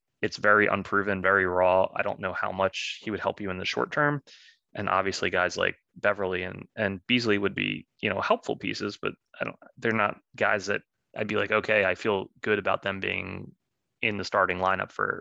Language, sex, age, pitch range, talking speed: English, male, 20-39, 95-110 Hz, 215 wpm